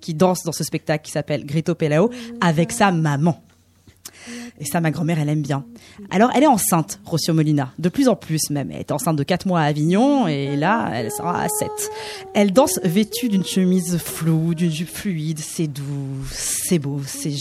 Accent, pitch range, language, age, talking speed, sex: French, 155-220 Hz, French, 20-39, 200 wpm, female